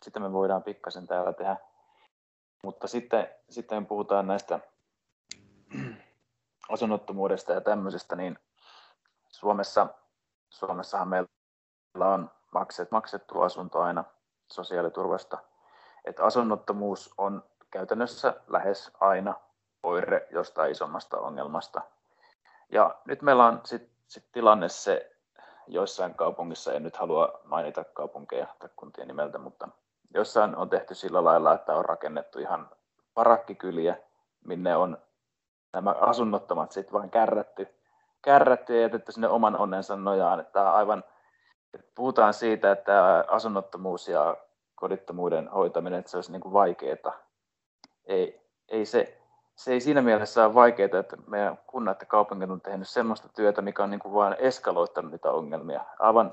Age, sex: 30-49, male